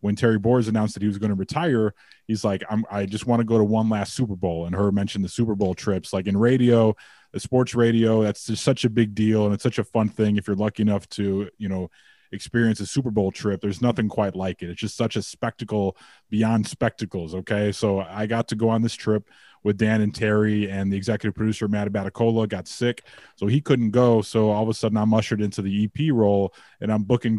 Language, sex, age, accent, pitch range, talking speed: English, male, 30-49, American, 100-115 Hz, 245 wpm